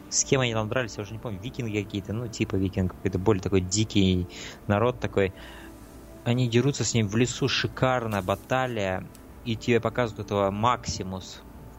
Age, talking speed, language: 20-39, 170 wpm, Russian